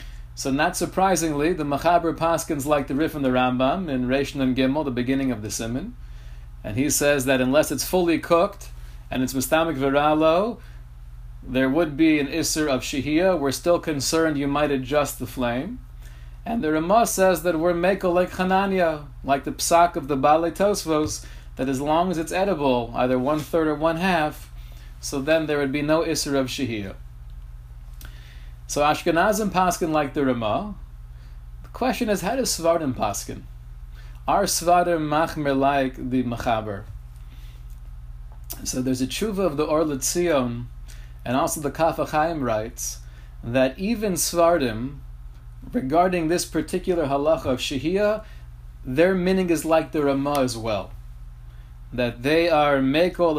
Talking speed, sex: 155 wpm, male